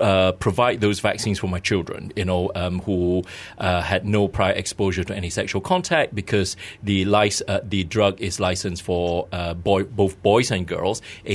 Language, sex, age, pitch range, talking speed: English, male, 30-49, 95-105 Hz, 190 wpm